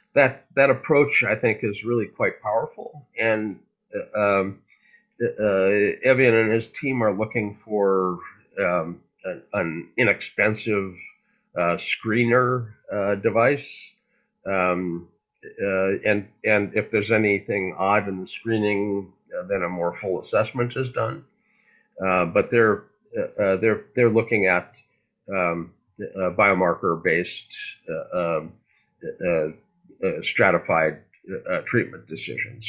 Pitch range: 95-125 Hz